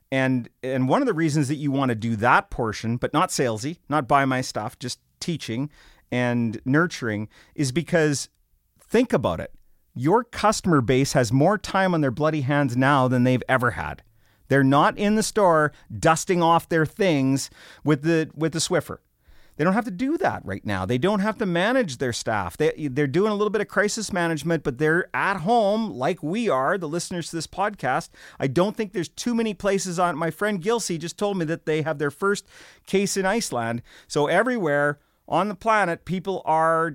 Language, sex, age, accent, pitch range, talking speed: English, male, 40-59, American, 130-190 Hz, 200 wpm